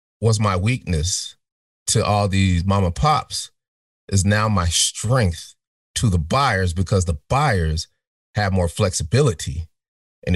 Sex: male